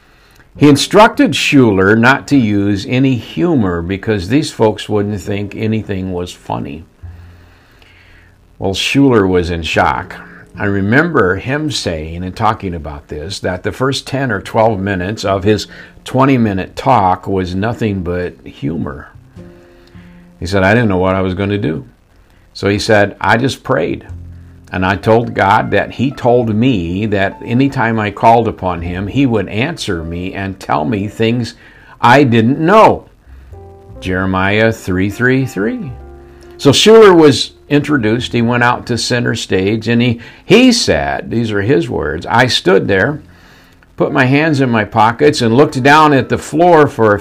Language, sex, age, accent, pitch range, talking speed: English, male, 60-79, American, 95-130 Hz, 160 wpm